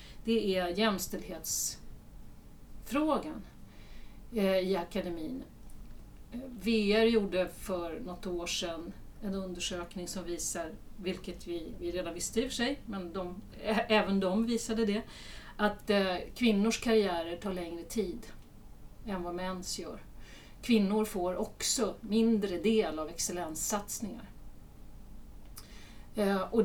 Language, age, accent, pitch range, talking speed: Swedish, 40-59, native, 180-225 Hz, 110 wpm